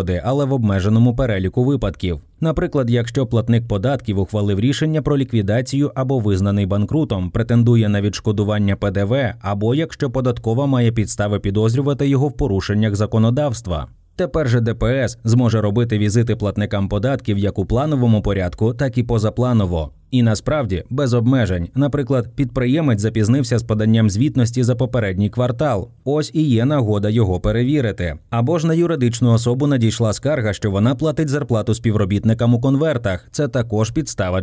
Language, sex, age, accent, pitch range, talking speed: Ukrainian, male, 20-39, native, 105-135 Hz, 140 wpm